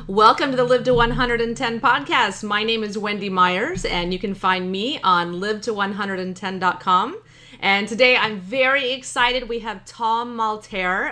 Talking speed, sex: 150 wpm, female